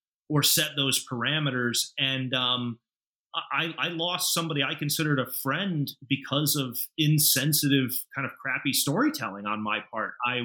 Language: English